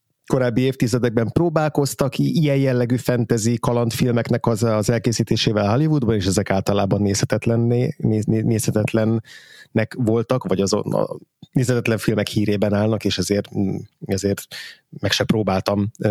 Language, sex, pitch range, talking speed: Hungarian, male, 105-130 Hz, 110 wpm